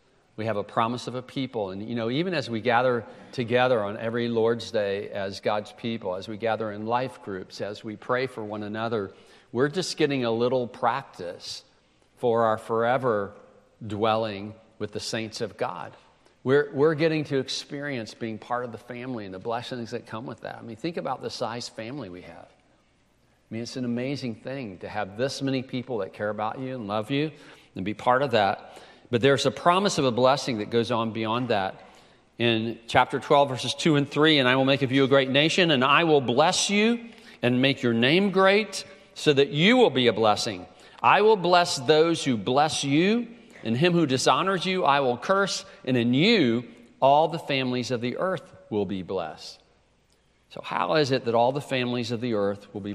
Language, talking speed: English, 205 wpm